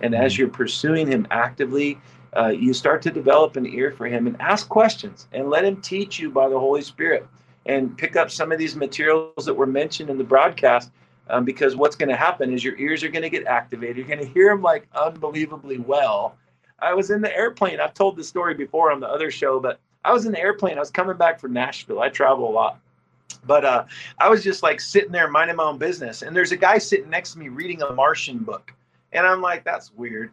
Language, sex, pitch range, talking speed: English, male, 130-190 Hz, 235 wpm